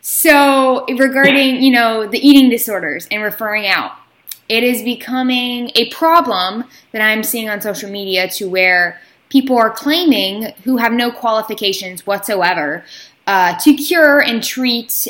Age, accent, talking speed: 10-29, American, 145 wpm